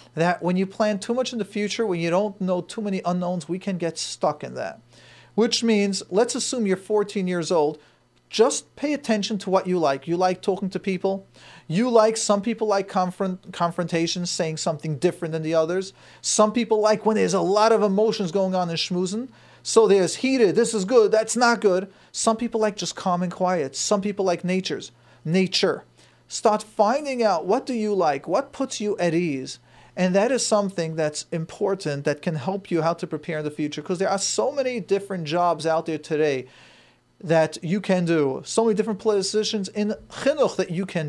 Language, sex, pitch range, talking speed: English, male, 170-215 Hz, 205 wpm